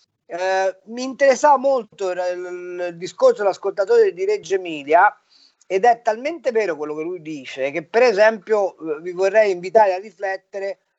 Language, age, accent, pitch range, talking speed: Italian, 40-59, native, 160-195 Hz, 160 wpm